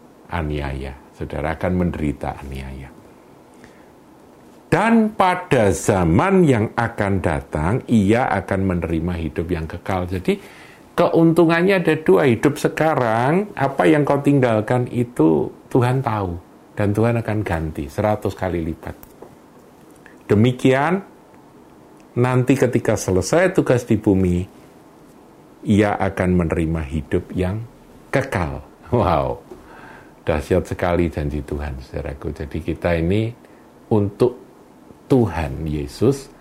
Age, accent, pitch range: 50-69, native, 80-115 Hz